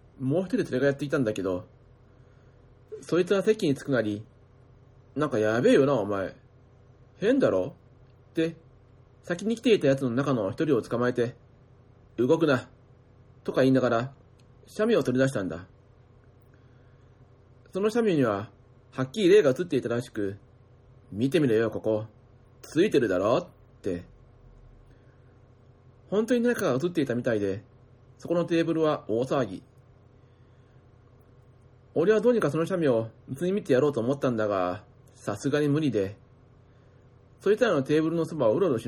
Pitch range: 120-145 Hz